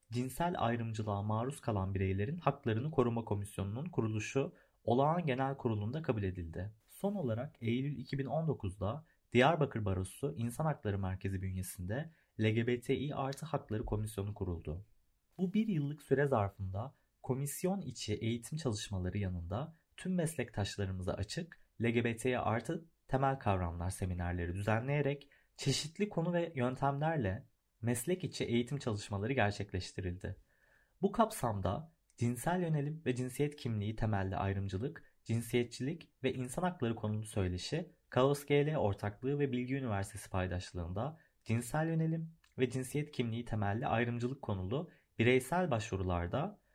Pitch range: 105-145 Hz